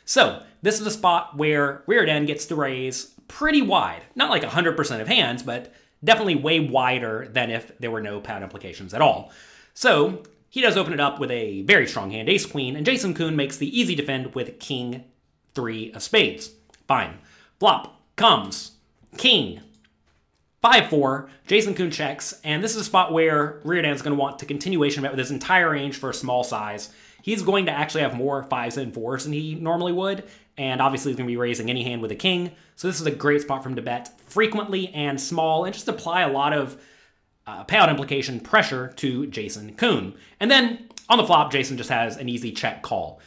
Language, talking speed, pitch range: English, 200 wpm, 120-165 Hz